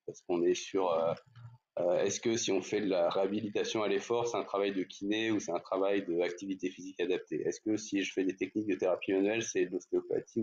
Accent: French